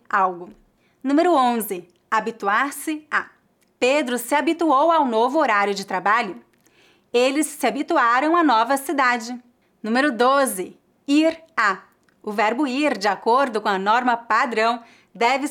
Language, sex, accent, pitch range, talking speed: English, female, Brazilian, 225-280 Hz, 130 wpm